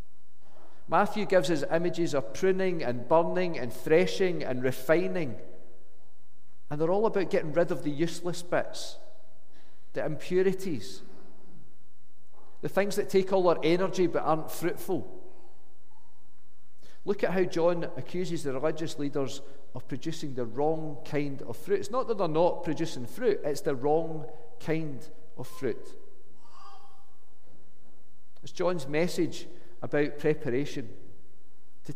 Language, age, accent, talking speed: English, 40-59, British, 130 wpm